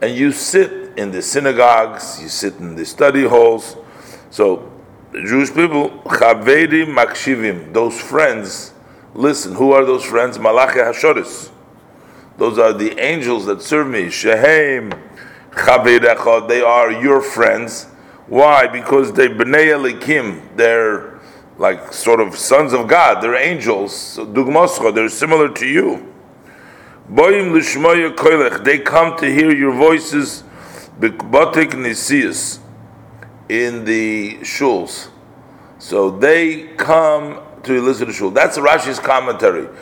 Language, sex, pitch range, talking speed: English, male, 115-160 Hz, 105 wpm